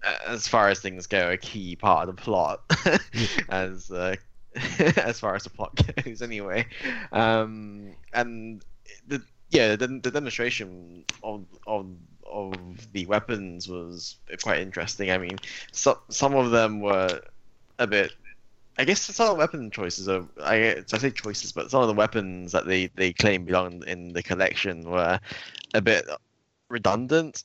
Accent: British